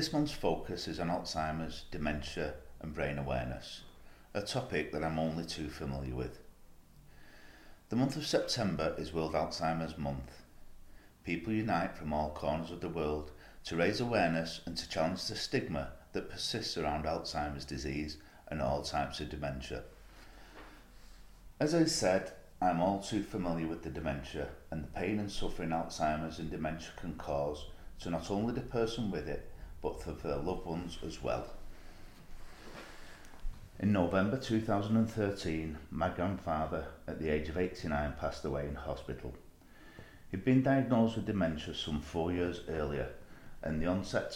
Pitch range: 75-90 Hz